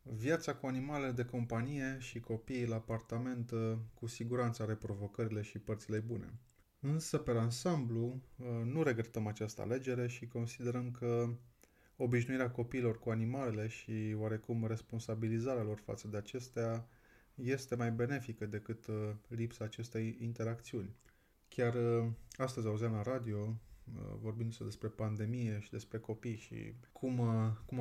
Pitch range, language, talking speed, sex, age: 110-120 Hz, Romanian, 125 wpm, male, 20-39